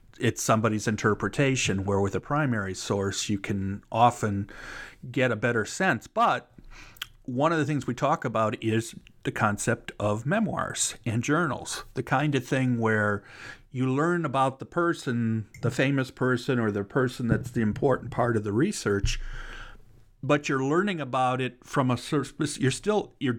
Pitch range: 110-135 Hz